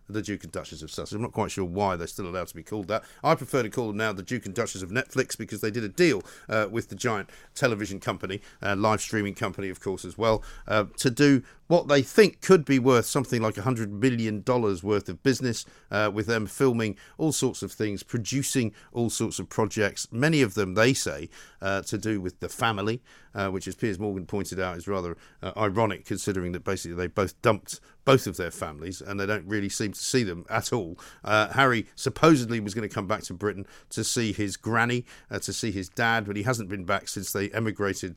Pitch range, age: 95-115 Hz, 50-69